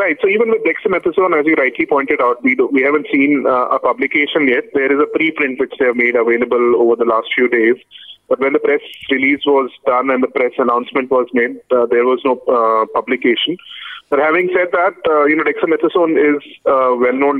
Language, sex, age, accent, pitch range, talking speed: English, male, 30-49, Indian, 125-170 Hz, 215 wpm